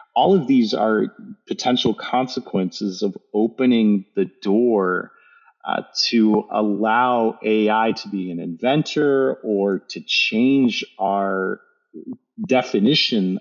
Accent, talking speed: American, 105 wpm